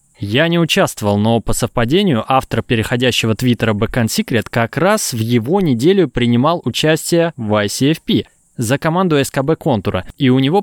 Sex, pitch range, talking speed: male, 115-155 Hz, 145 wpm